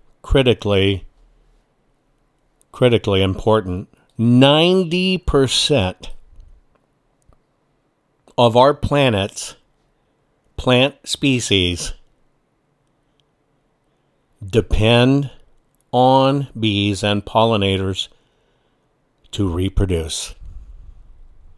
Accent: American